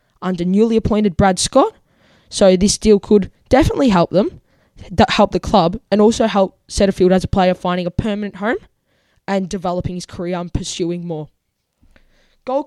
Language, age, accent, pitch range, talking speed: English, 10-29, Australian, 185-220 Hz, 160 wpm